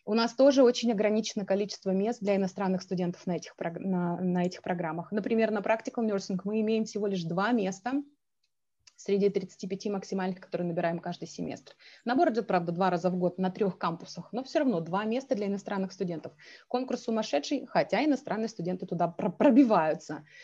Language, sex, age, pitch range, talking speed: Russian, female, 20-39, 180-220 Hz, 160 wpm